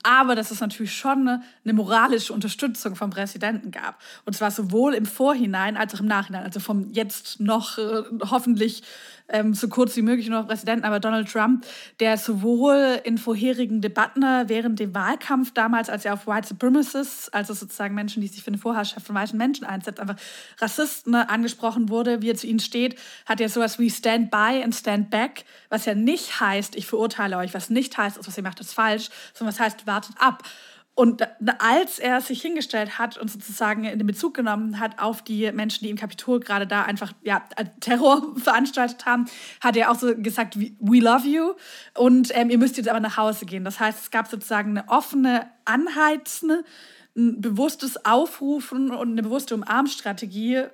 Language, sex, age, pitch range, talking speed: German, female, 20-39, 215-255 Hz, 185 wpm